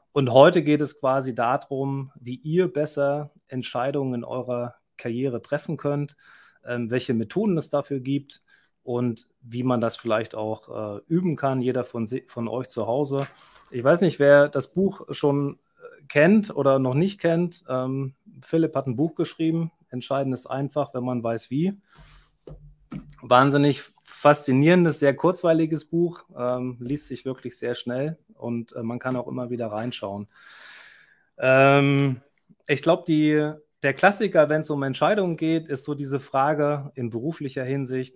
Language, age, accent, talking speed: German, 30-49, German, 145 wpm